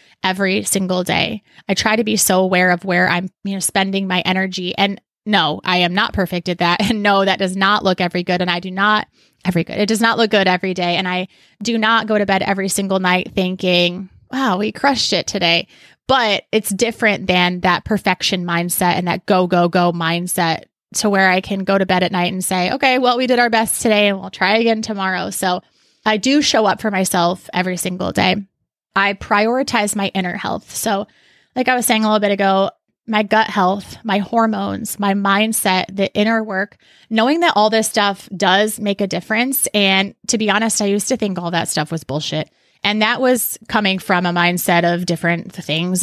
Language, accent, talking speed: English, American, 215 wpm